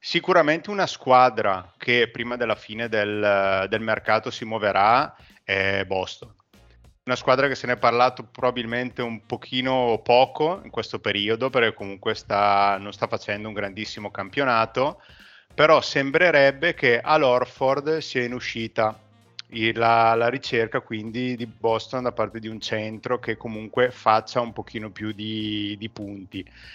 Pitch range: 105-130 Hz